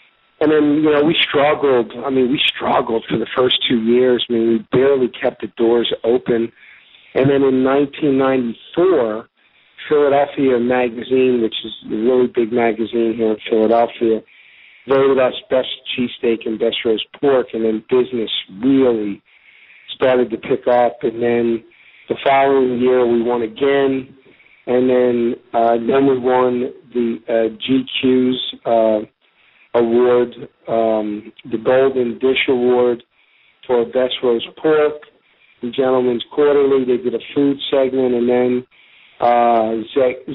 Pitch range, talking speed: 115-135 Hz, 140 wpm